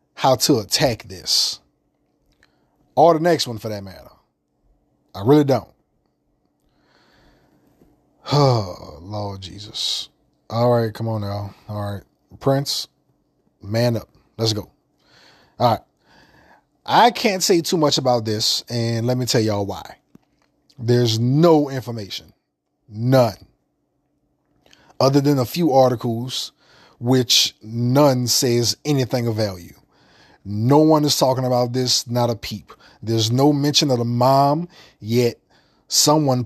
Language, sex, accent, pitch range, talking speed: English, male, American, 110-140 Hz, 125 wpm